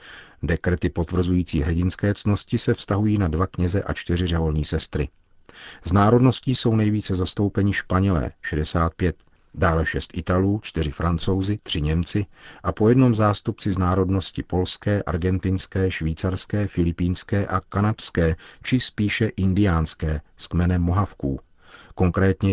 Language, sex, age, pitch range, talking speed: Czech, male, 50-69, 85-100 Hz, 125 wpm